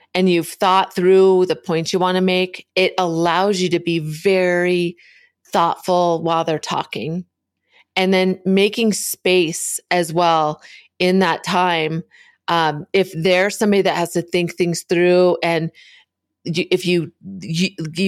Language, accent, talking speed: English, American, 145 wpm